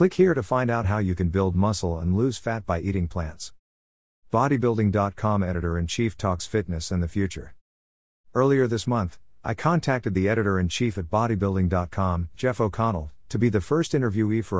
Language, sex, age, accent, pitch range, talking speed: English, male, 50-69, American, 85-110 Hz, 165 wpm